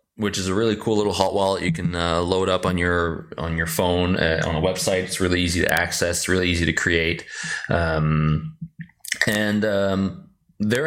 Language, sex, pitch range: English, male, 85-105 Hz